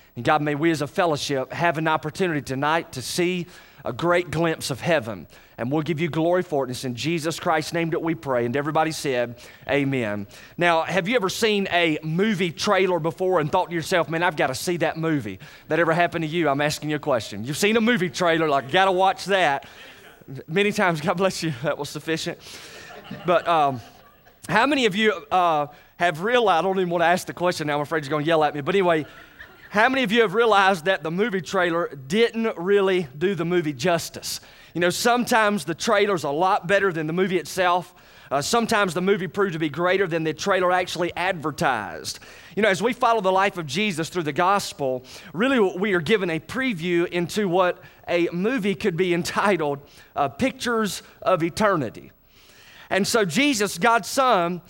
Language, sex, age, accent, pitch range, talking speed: English, male, 30-49, American, 160-200 Hz, 205 wpm